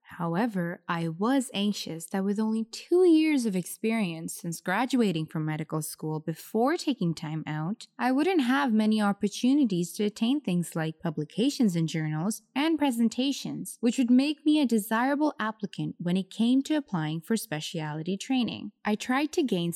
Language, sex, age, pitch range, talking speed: English, female, 20-39, 175-240 Hz, 160 wpm